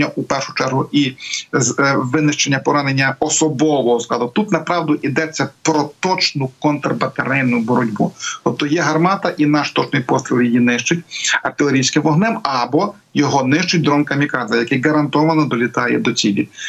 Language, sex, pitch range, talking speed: Ukrainian, male, 130-160 Hz, 135 wpm